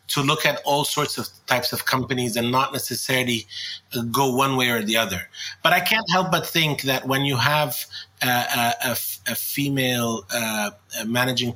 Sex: male